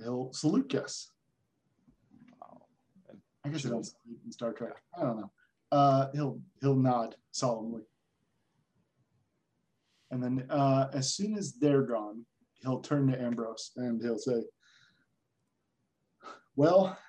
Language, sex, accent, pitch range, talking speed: English, male, American, 125-150 Hz, 120 wpm